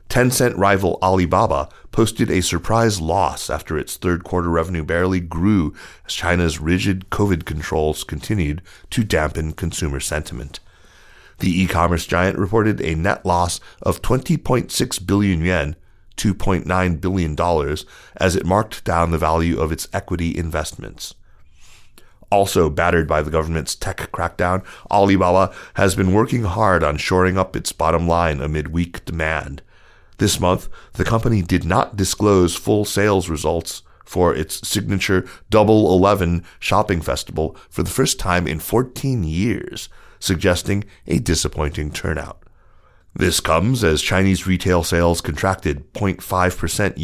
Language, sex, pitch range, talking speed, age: English, male, 80-100 Hz, 130 wpm, 40-59